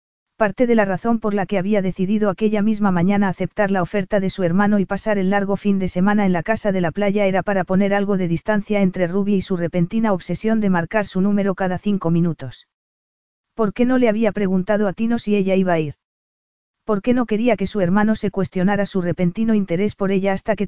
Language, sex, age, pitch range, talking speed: Spanish, female, 40-59, 180-210 Hz, 230 wpm